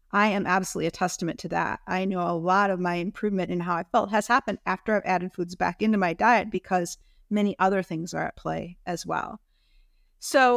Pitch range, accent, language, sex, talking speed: 180-235 Hz, American, English, female, 215 wpm